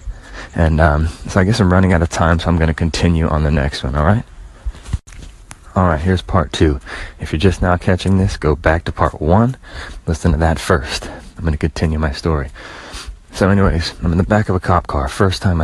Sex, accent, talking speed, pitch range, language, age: male, American, 220 wpm, 80-95 Hz, English, 30-49